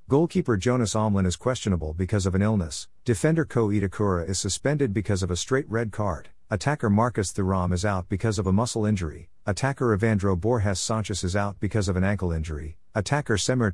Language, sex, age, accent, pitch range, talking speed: English, male, 50-69, American, 90-115 Hz, 190 wpm